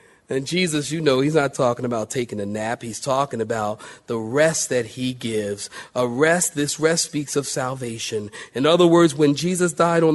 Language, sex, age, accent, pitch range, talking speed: English, male, 40-59, American, 140-185 Hz, 195 wpm